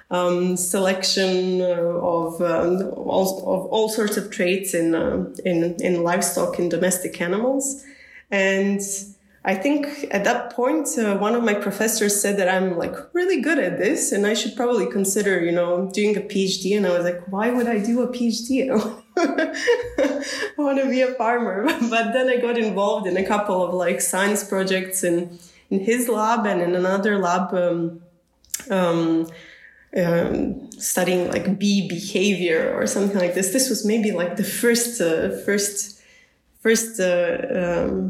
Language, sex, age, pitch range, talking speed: English, female, 20-39, 180-235 Hz, 160 wpm